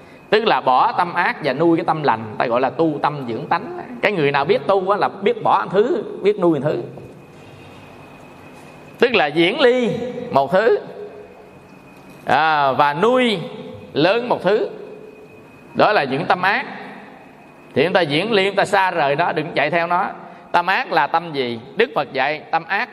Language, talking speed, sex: Vietnamese, 185 wpm, male